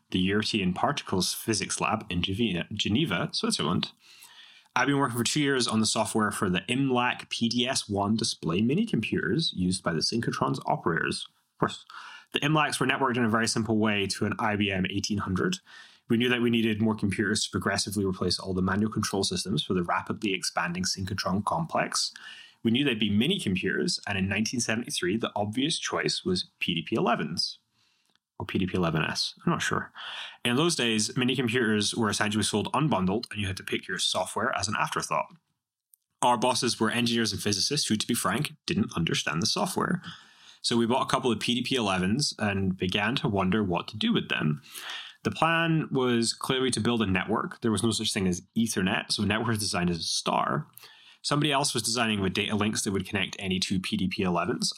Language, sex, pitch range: English, male, 100-125 Hz